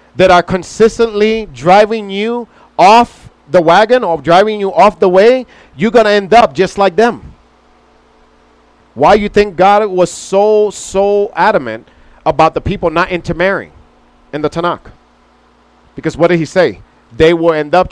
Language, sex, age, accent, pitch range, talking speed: English, male, 40-59, American, 155-210 Hz, 160 wpm